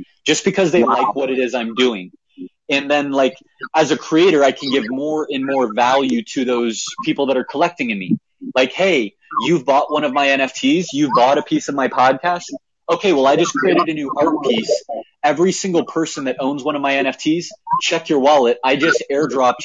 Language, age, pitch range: English, 20-39, 125-170 Hz